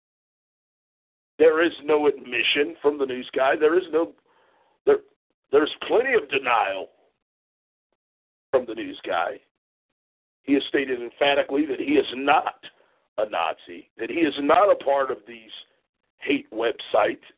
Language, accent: English, American